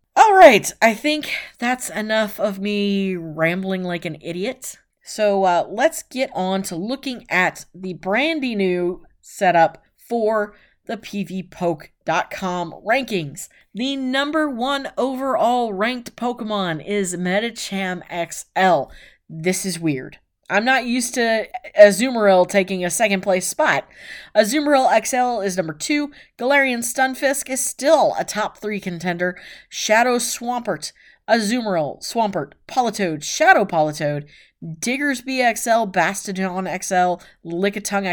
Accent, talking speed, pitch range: American, 120 wpm, 180-245 Hz